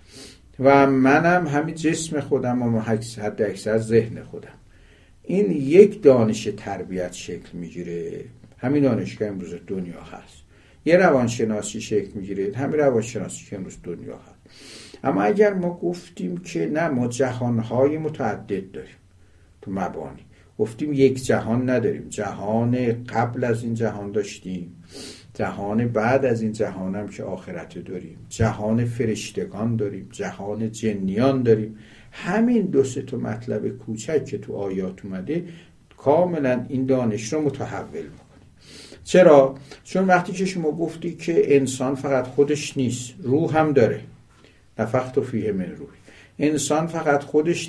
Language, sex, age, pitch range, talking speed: Persian, male, 60-79, 110-145 Hz, 125 wpm